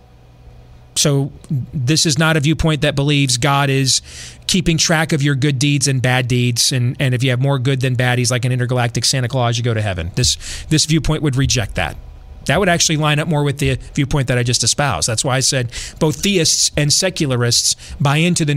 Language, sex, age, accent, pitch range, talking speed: English, male, 30-49, American, 120-155 Hz, 220 wpm